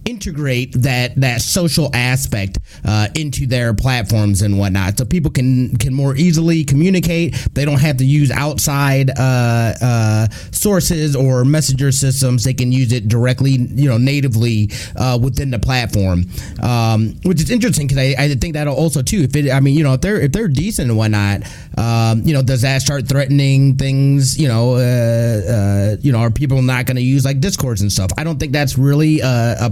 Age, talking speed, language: 30-49, 195 wpm, English